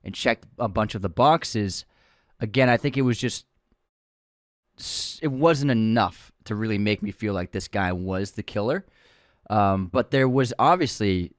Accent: American